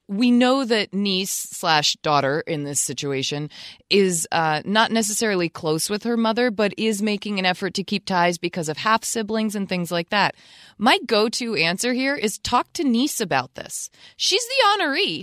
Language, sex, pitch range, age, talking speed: English, female, 160-225 Hz, 20-39, 175 wpm